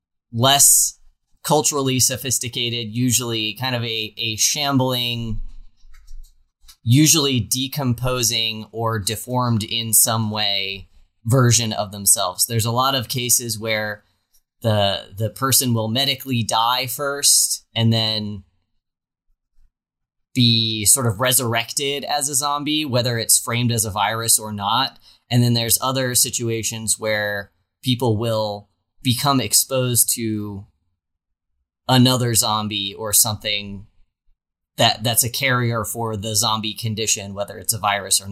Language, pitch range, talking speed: English, 100-125 Hz, 120 wpm